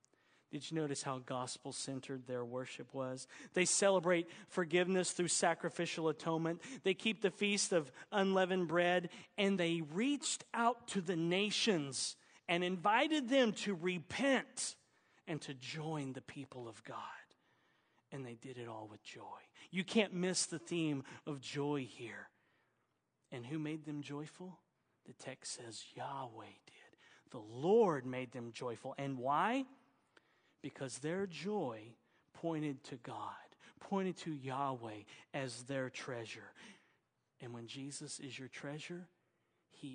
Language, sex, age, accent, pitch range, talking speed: English, male, 40-59, American, 135-180 Hz, 135 wpm